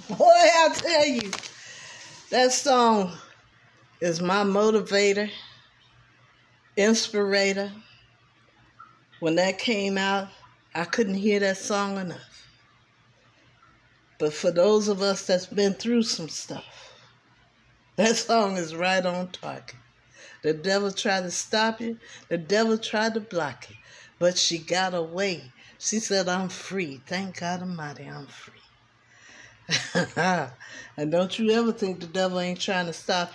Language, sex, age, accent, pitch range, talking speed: English, female, 60-79, American, 160-210 Hz, 130 wpm